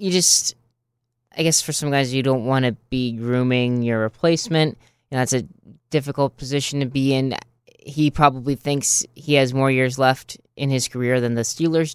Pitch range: 115-130 Hz